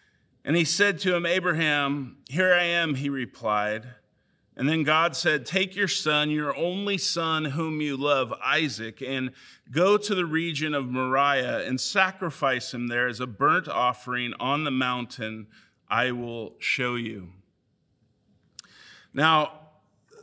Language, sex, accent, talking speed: English, male, American, 140 wpm